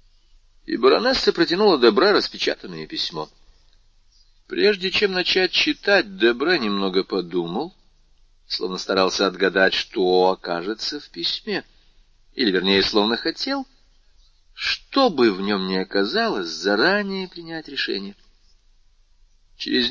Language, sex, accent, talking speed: Russian, male, native, 100 wpm